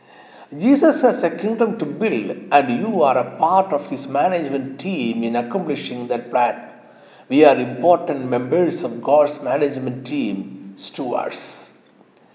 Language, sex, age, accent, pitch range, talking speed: Malayalam, male, 60-79, native, 135-200 Hz, 135 wpm